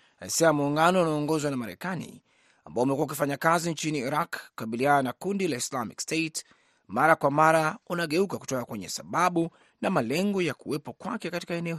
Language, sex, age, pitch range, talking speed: Swahili, male, 30-49, 140-170 Hz, 170 wpm